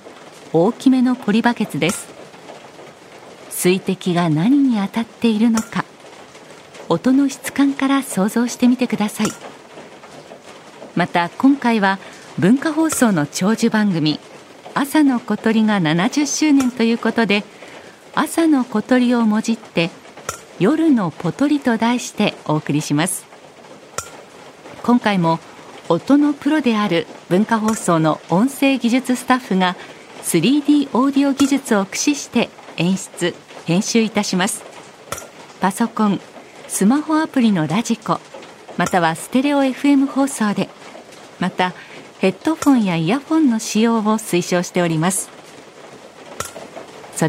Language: Japanese